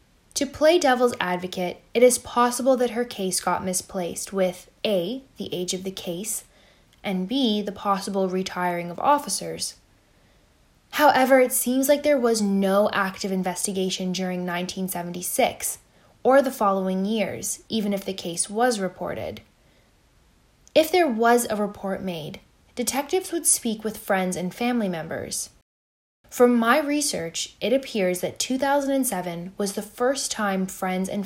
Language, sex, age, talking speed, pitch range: English, female, 10-29, 140 wpm, 185-245 Hz